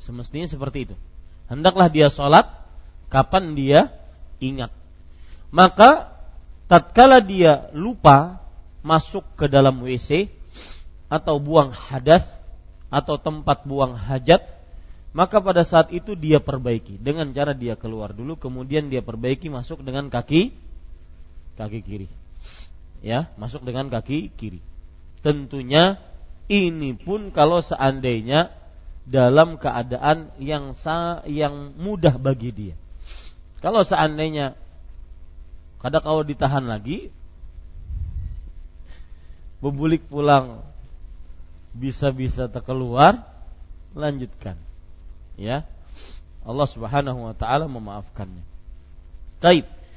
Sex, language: male, Malay